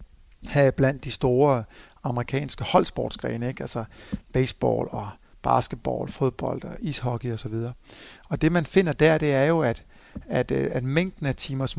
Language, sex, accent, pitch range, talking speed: Danish, male, native, 125-165 Hz, 155 wpm